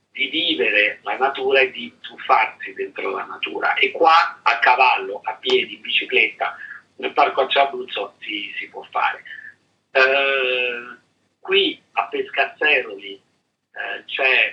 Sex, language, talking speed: male, Italian, 130 wpm